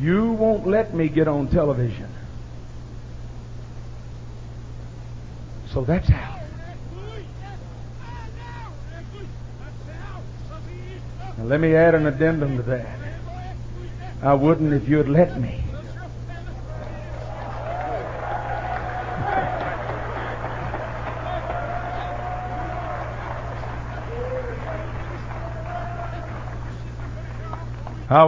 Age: 60-79